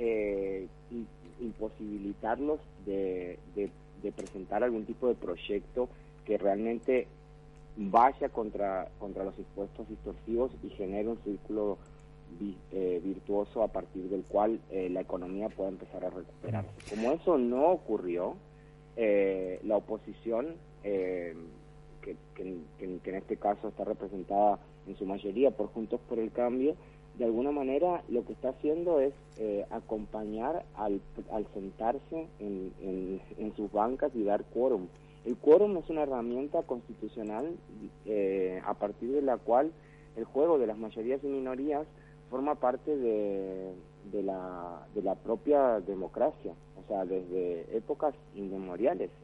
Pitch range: 100-130 Hz